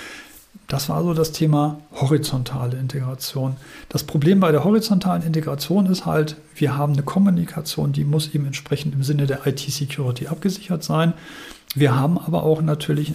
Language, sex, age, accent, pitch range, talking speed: German, male, 40-59, German, 140-160 Hz, 155 wpm